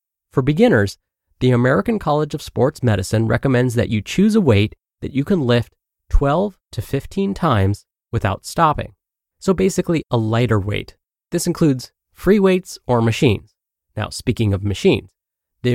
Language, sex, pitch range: English, male, 105-165 Hz